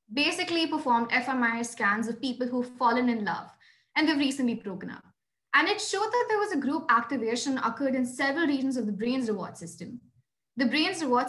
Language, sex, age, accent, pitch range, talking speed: English, female, 20-39, Indian, 230-280 Hz, 195 wpm